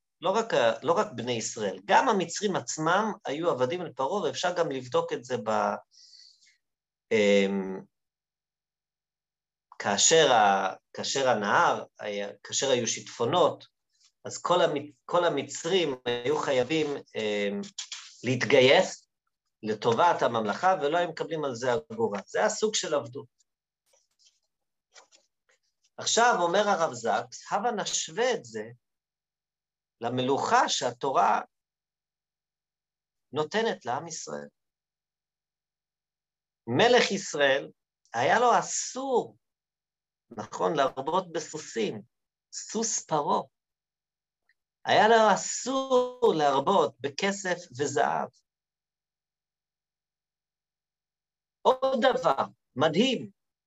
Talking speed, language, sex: 80 wpm, Hebrew, male